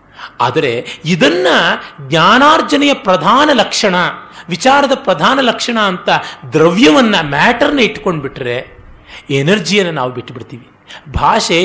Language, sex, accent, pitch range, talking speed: Kannada, male, native, 155-230 Hz, 90 wpm